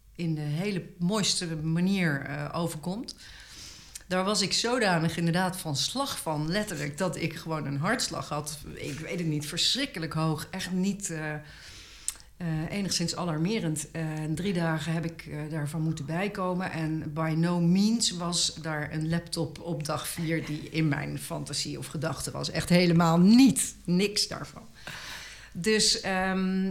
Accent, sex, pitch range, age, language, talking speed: Dutch, female, 155-185 Hz, 50-69, Dutch, 150 wpm